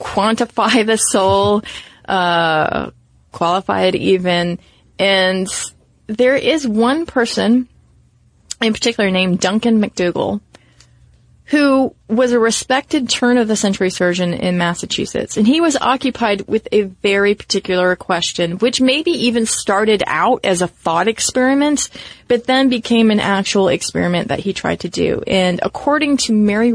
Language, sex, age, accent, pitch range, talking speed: English, female, 30-49, American, 185-245 Hz, 130 wpm